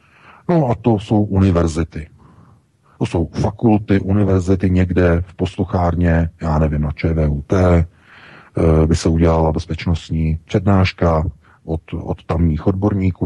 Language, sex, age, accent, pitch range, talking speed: Czech, male, 40-59, native, 85-115 Hz, 115 wpm